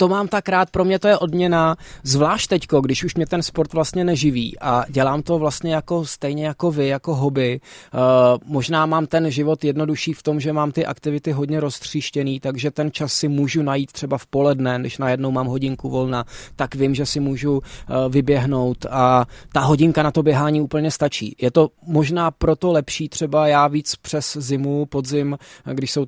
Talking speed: 190 wpm